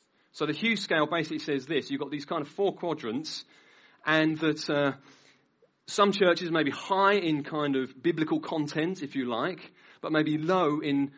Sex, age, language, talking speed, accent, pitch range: male, 30-49, English, 185 wpm, British, 135-175 Hz